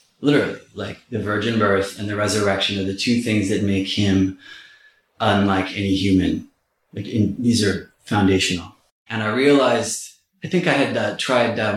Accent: American